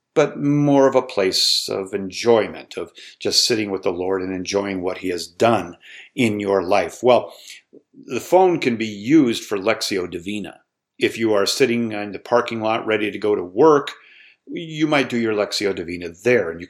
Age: 50-69